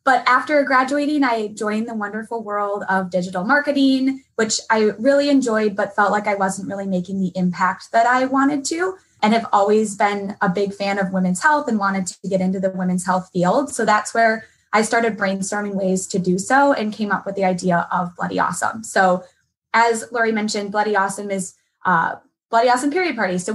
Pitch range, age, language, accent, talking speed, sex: 190-235 Hz, 20-39, English, American, 200 wpm, female